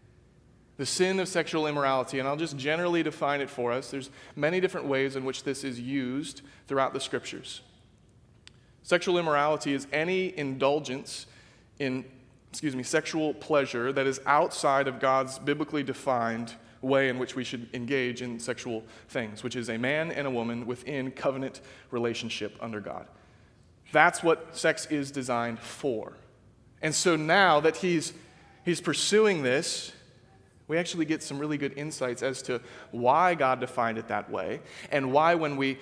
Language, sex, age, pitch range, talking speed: English, male, 30-49, 120-145 Hz, 160 wpm